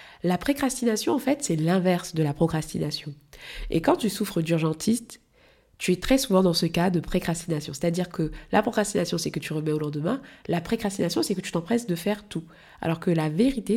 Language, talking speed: French, 200 wpm